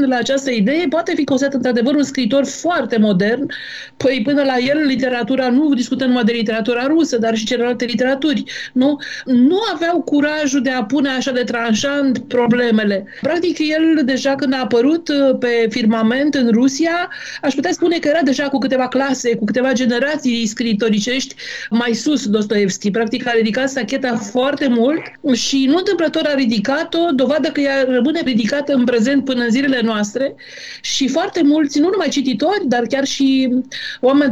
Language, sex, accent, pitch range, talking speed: Romanian, female, native, 235-285 Hz, 165 wpm